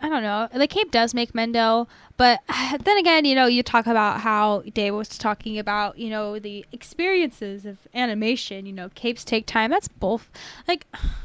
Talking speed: 185 wpm